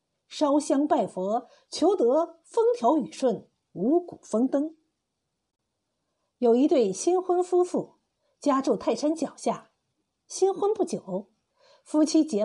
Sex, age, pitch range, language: female, 50-69, 235-360 Hz, Chinese